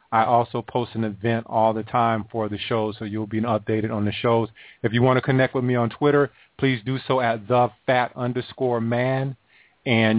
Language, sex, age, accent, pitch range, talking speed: English, male, 30-49, American, 110-125 Hz, 210 wpm